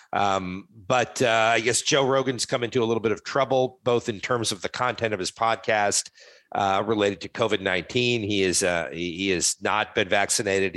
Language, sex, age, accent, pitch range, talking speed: English, male, 50-69, American, 90-115 Hz, 200 wpm